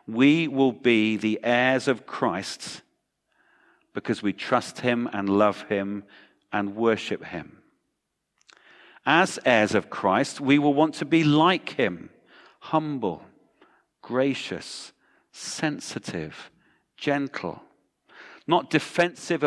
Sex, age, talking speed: male, 40-59, 105 wpm